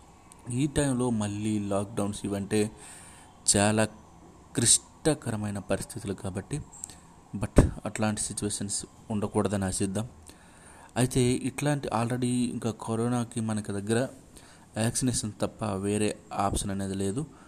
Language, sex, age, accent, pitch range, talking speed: Telugu, male, 30-49, native, 95-115 Hz, 95 wpm